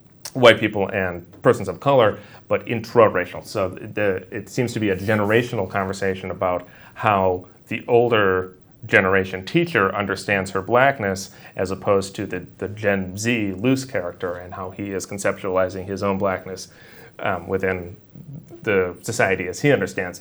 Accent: American